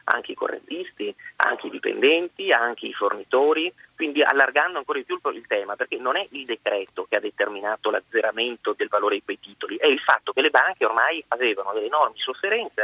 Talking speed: 190 wpm